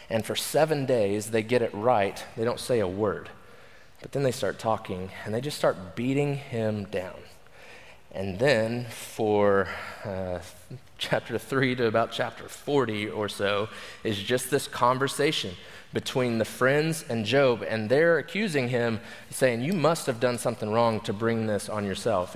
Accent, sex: American, male